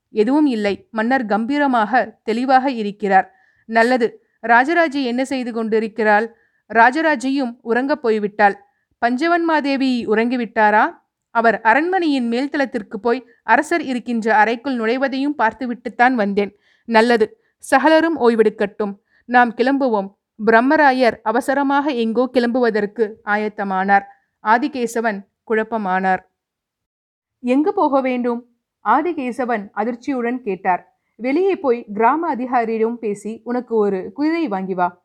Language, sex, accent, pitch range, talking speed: Tamil, female, native, 215-265 Hz, 90 wpm